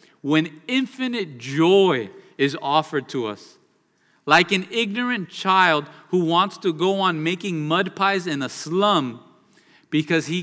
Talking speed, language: 140 wpm, English